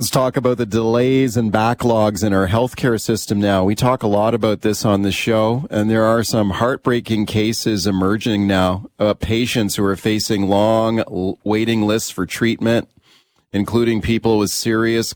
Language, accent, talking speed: English, American, 170 wpm